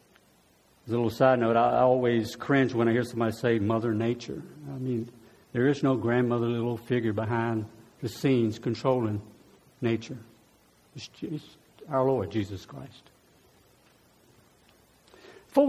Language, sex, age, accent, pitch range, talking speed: English, male, 60-79, American, 115-145 Hz, 130 wpm